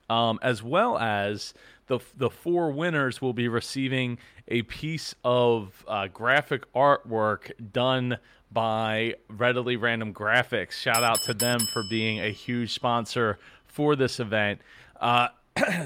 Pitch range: 110-135 Hz